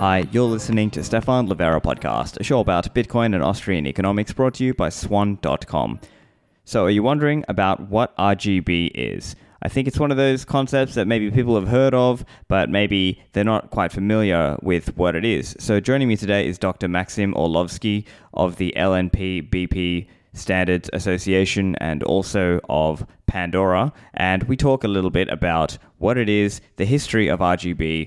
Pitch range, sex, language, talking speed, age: 95-120 Hz, male, English, 175 wpm, 20-39